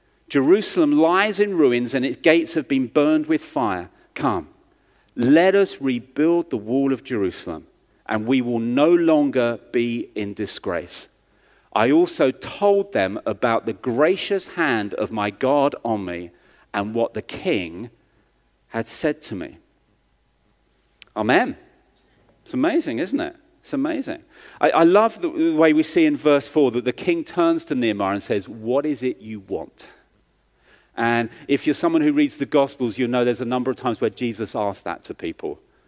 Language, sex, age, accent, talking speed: English, male, 40-59, British, 165 wpm